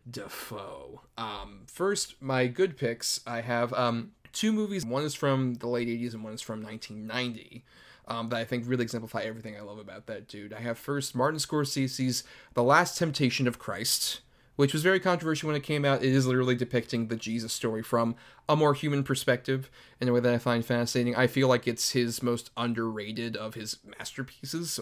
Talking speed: 195 wpm